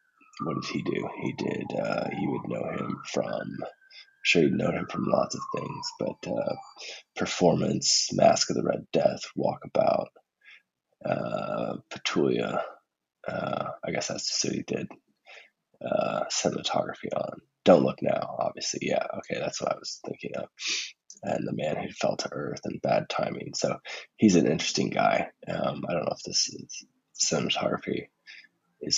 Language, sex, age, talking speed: English, male, 20-39, 160 wpm